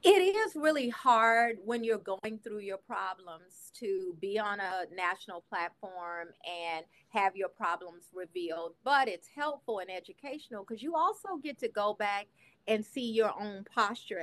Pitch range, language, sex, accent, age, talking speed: 180-235 Hz, English, female, American, 30-49, 160 wpm